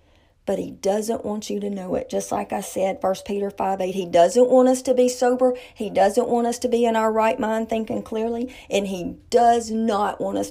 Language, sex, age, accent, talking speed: English, female, 40-59, American, 235 wpm